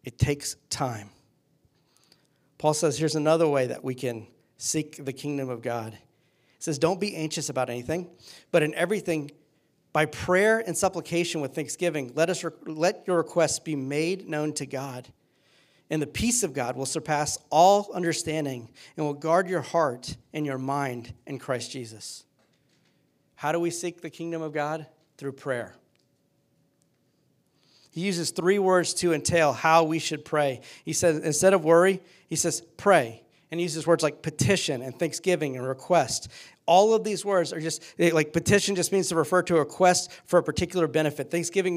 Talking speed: 170 wpm